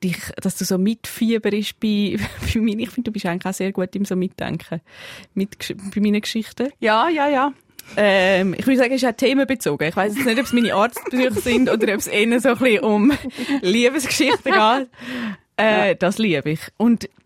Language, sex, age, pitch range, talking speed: German, female, 20-39, 185-235 Hz, 200 wpm